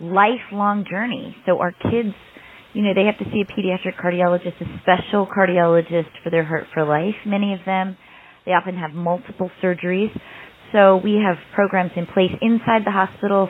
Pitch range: 165-195 Hz